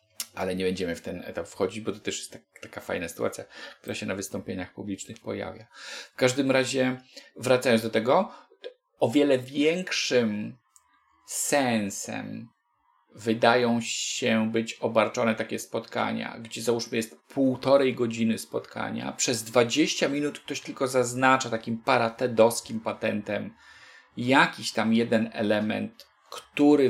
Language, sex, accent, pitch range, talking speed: Polish, male, native, 115-150 Hz, 125 wpm